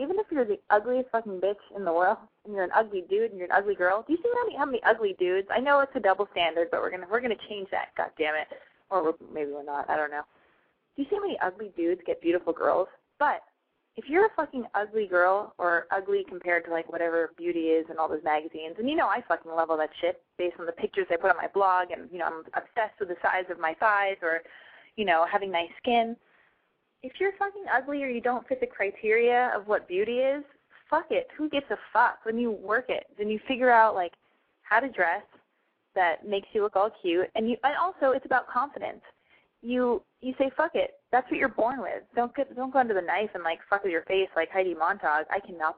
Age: 20-39